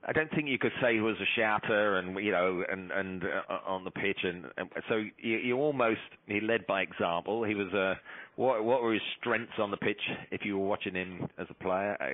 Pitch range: 95-110 Hz